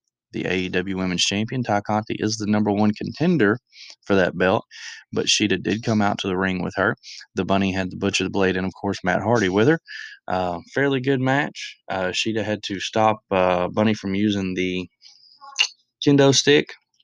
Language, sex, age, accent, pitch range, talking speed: English, male, 20-39, American, 95-125 Hz, 190 wpm